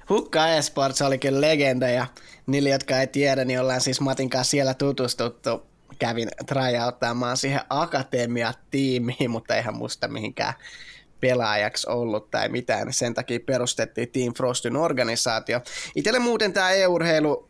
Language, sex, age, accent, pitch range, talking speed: Finnish, male, 20-39, native, 130-150 Hz, 125 wpm